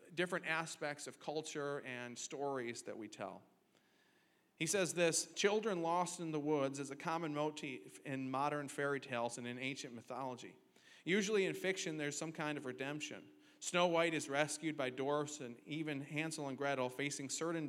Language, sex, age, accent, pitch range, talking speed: English, male, 40-59, American, 130-160 Hz, 170 wpm